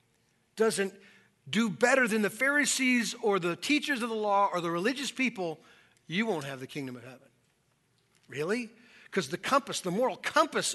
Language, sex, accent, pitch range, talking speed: English, male, American, 165-225 Hz, 165 wpm